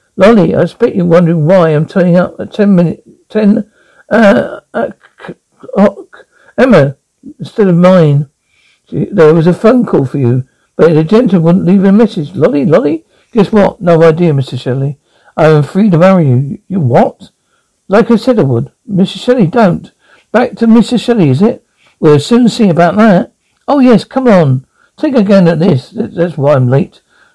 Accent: British